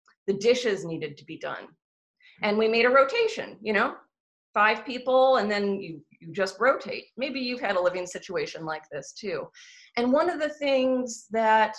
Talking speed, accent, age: 185 wpm, American, 30-49